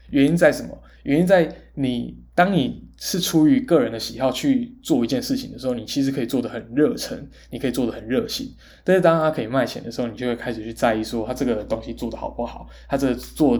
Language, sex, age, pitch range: Chinese, male, 20-39, 115-185 Hz